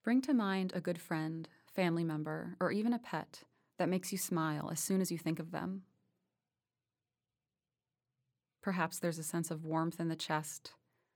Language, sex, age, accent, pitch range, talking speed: English, female, 30-49, American, 155-185 Hz, 170 wpm